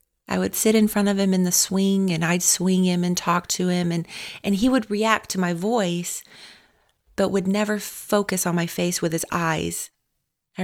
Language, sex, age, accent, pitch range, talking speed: English, female, 30-49, American, 165-200 Hz, 210 wpm